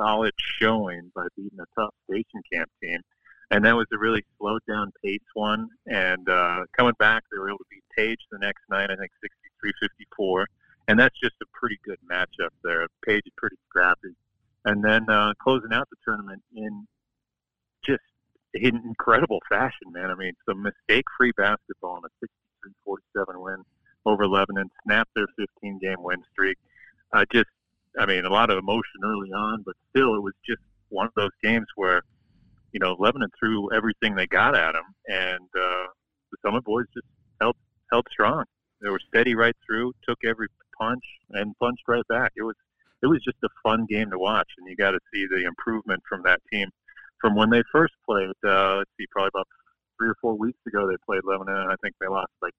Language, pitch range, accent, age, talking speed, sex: English, 95-115 Hz, American, 40-59, 195 wpm, male